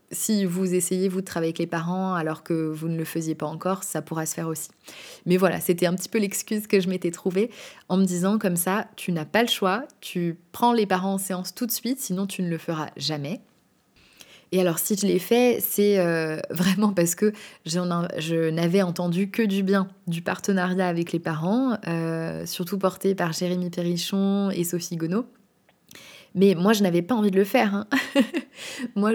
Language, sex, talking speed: French, female, 210 wpm